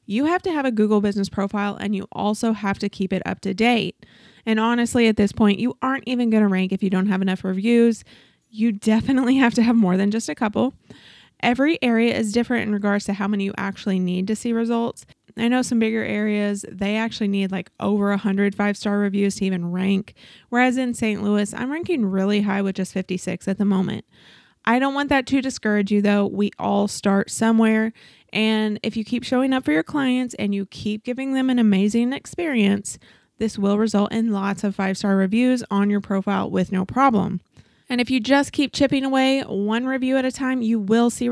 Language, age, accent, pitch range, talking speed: English, 20-39, American, 200-245 Hz, 215 wpm